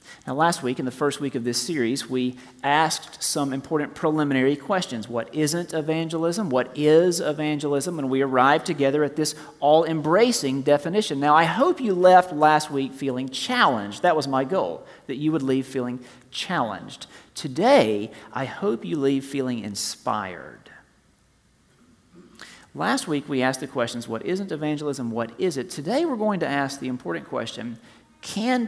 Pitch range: 130-180 Hz